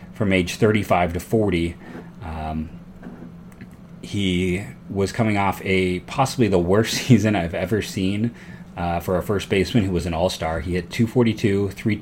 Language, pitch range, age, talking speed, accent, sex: English, 90-105 Hz, 30-49, 155 wpm, American, male